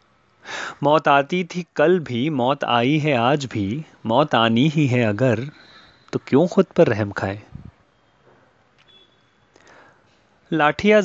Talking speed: 120 wpm